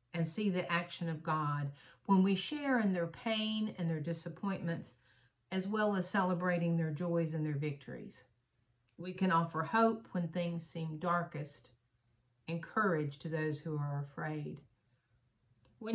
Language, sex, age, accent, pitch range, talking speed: English, female, 50-69, American, 145-195 Hz, 150 wpm